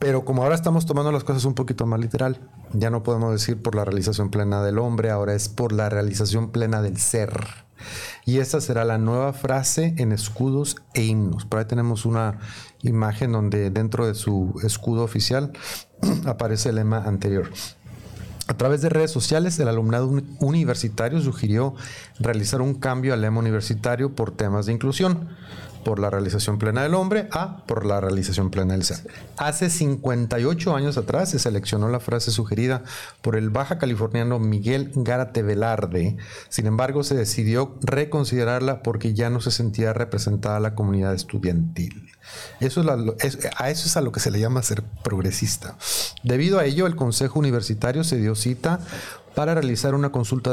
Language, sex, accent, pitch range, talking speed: Spanish, male, Mexican, 110-140 Hz, 170 wpm